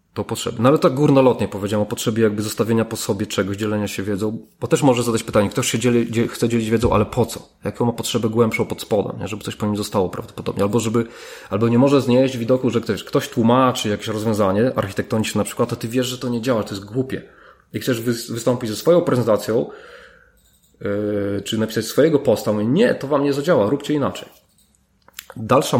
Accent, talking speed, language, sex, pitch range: native, 210 wpm, Polish, male, 105-125 Hz